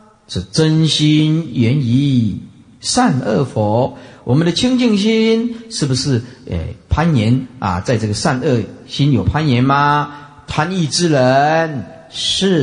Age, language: 50-69, Chinese